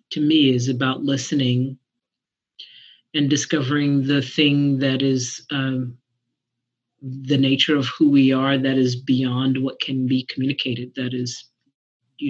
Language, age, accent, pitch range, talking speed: English, 40-59, American, 125-140 Hz, 135 wpm